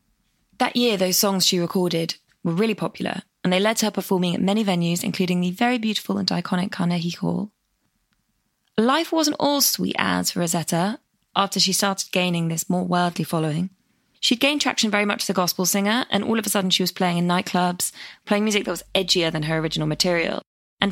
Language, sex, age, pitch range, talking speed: English, female, 20-39, 175-215 Hz, 200 wpm